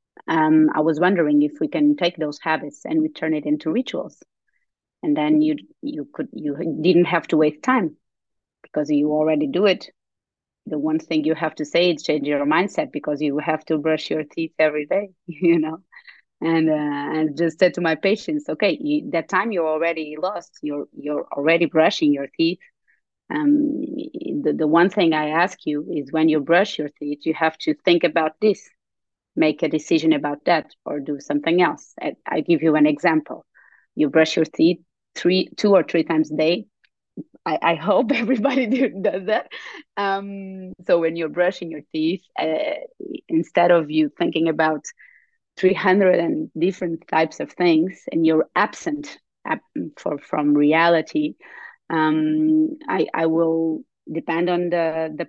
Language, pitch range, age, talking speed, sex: English, 155-200 Hz, 30-49, 175 wpm, female